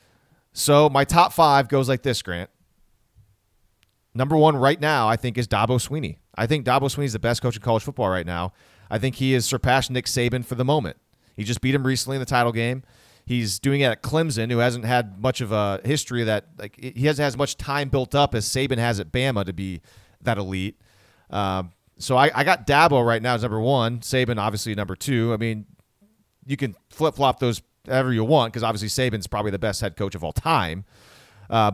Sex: male